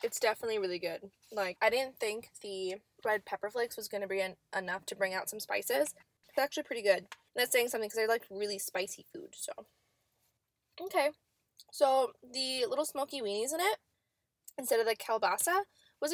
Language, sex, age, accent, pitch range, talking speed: English, female, 10-29, American, 210-310 Hz, 180 wpm